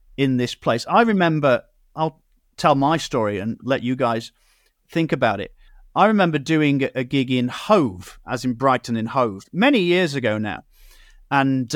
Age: 40-59